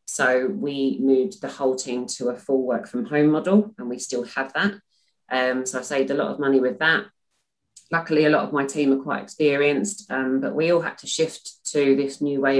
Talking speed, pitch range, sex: 230 wpm, 135-180 Hz, female